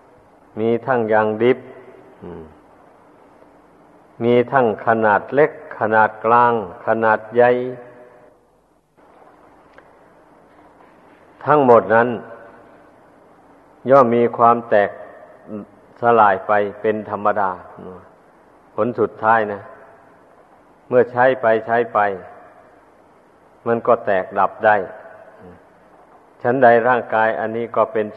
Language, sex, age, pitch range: Thai, male, 50-69, 110-120 Hz